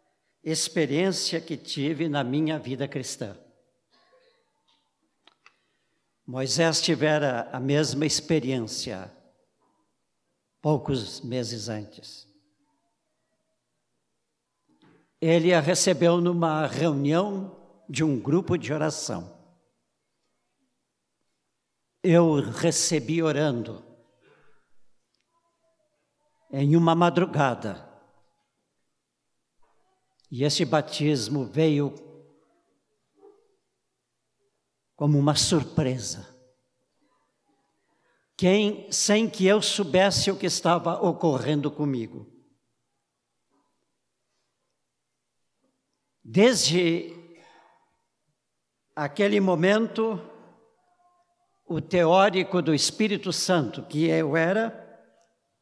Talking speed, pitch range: 65 wpm, 140-180 Hz